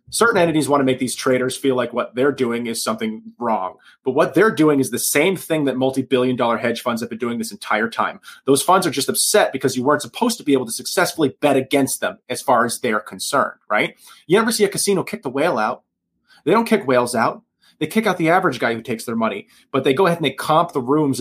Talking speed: 255 wpm